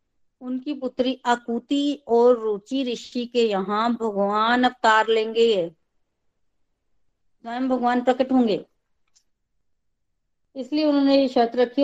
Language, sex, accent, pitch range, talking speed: Hindi, female, native, 210-260 Hz, 100 wpm